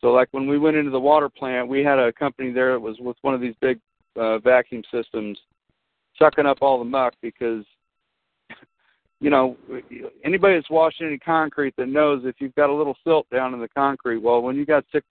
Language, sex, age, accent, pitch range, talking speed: English, male, 50-69, American, 125-155 Hz, 215 wpm